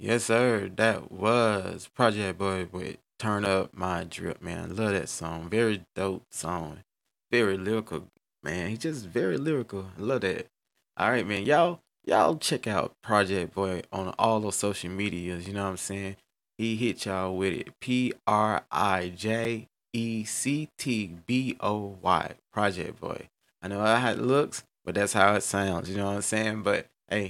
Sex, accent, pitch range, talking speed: male, American, 95-115 Hz, 160 wpm